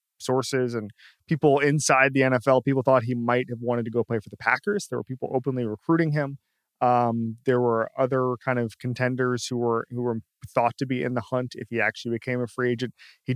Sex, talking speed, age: male, 220 wpm, 20-39